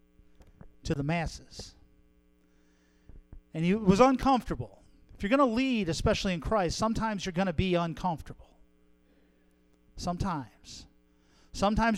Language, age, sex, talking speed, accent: English, 40-59, male, 115 wpm, American